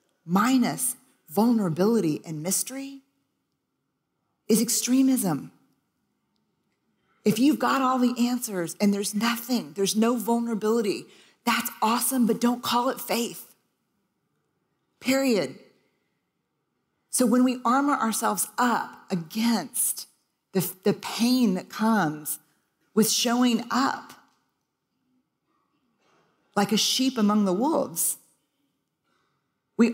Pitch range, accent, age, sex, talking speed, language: 210-255 Hz, American, 40-59, female, 95 wpm, English